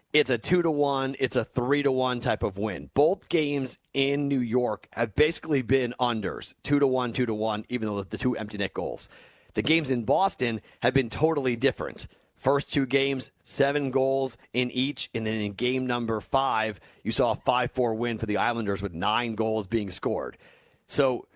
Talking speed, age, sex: 200 wpm, 30-49, male